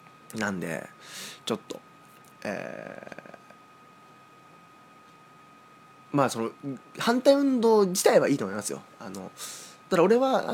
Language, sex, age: Japanese, male, 20-39